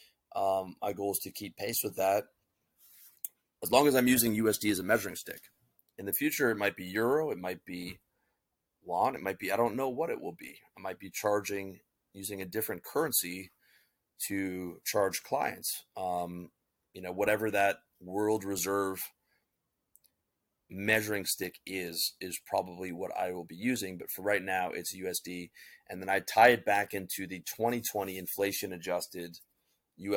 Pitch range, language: 90-105 Hz, English